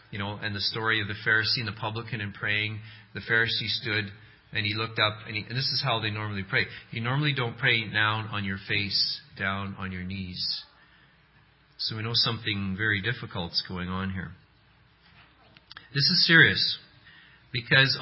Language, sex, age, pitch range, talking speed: English, male, 40-59, 105-150 Hz, 180 wpm